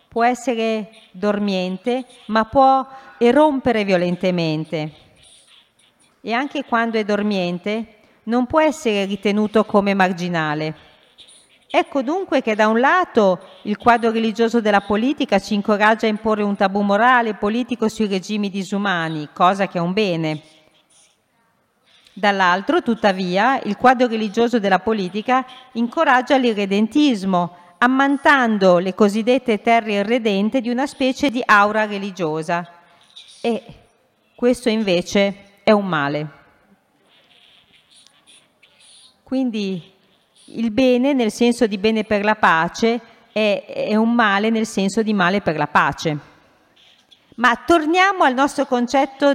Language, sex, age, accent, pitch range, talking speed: Italian, female, 40-59, native, 195-245 Hz, 120 wpm